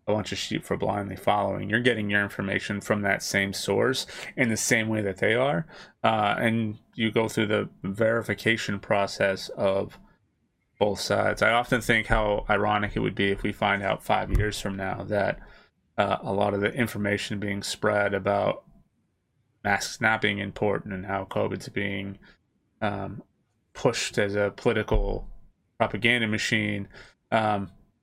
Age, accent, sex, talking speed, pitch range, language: 30-49, American, male, 160 wpm, 100-115 Hz, English